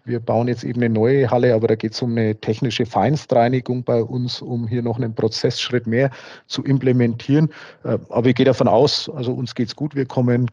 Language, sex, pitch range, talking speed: German, male, 120-140 Hz, 210 wpm